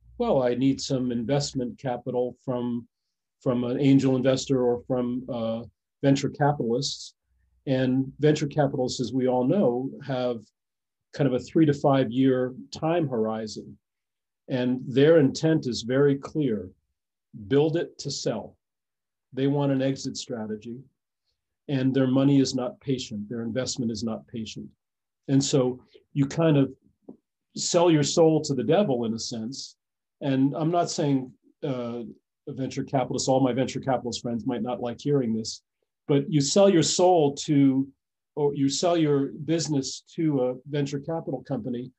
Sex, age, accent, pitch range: male, 40-59, American, 125-145 Hz